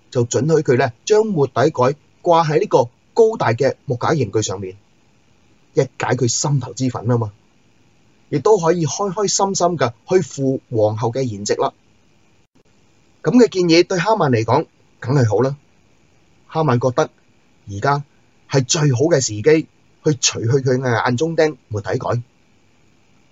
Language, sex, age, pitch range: Chinese, male, 30-49, 115-155 Hz